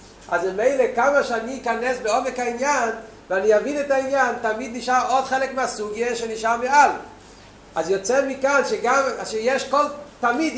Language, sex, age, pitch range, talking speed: Hebrew, male, 40-59, 220-260 Hz, 125 wpm